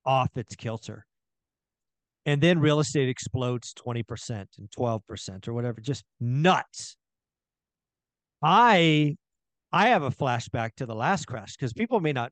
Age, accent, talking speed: 40-59, American, 135 wpm